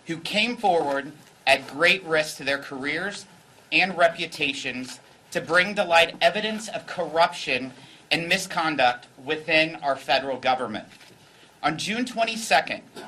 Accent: American